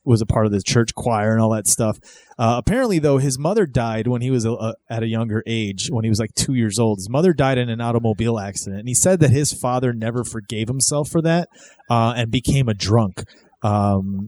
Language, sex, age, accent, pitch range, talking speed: English, male, 30-49, American, 110-140 Hz, 230 wpm